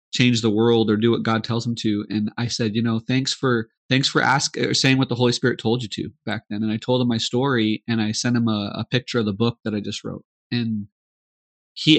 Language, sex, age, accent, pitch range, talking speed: English, male, 30-49, American, 110-135 Hz, 265 wpm